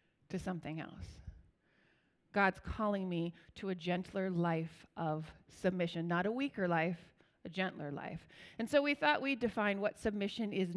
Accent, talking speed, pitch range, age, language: American, 155 wpm, 180-220 Hz, 30-49, English